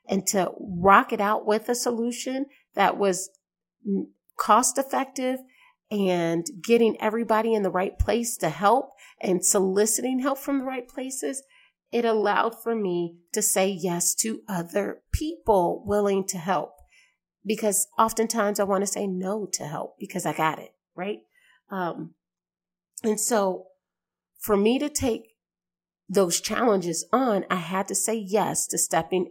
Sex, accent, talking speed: female, American, 145 wpm